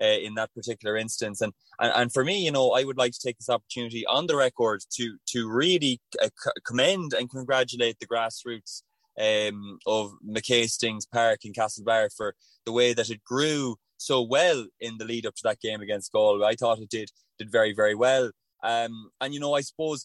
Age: 20-39